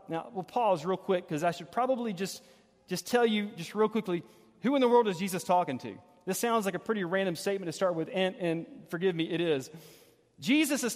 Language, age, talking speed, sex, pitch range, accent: English, 40-59, 230 wpm, male, 185-260 Hz, American